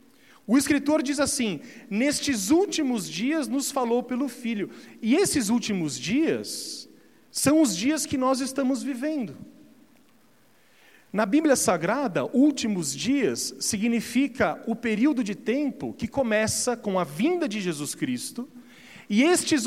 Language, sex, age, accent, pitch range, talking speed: Portuguese, male, 40-59, Brazilian, 190-280 Hz, 130 wpm